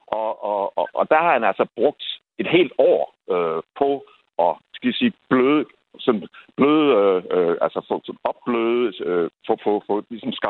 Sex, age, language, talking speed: male, 60-79, Danish, 115 wpm